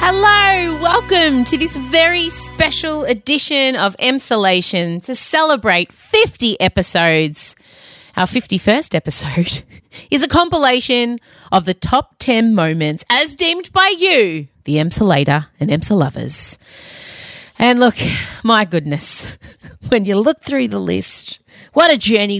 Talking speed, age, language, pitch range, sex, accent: 125 wpm, 30-49, English, 170-265 Hz, female, Australian